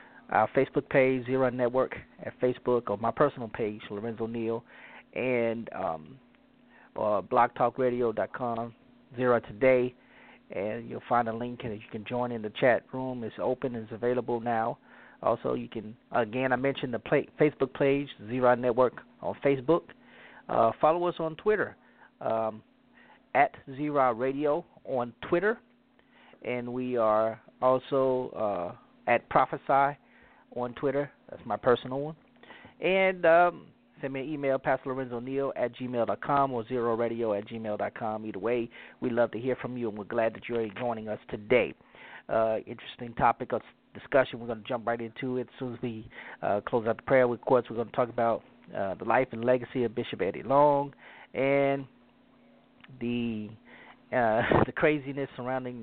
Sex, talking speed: male, 165 wpm